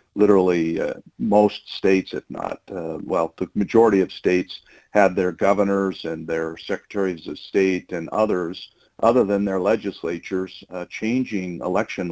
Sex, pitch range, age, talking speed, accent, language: male, 85-100 Hz, 50-69, 145 wpm, American, English